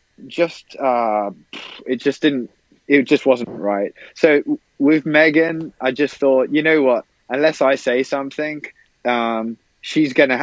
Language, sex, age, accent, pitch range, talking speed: English, male, 20-39, British, 120-145 Hz, 145 wpm